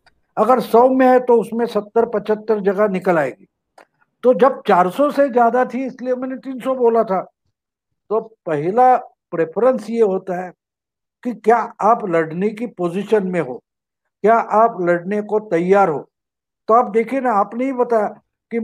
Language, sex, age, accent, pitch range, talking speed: English, male, 50-69, Indian, 195-240 Hz, 160 wpm